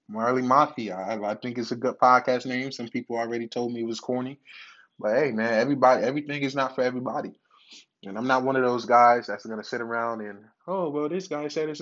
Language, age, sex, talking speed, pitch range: English, 20-39, male, 230 wpm, 115-135 Hz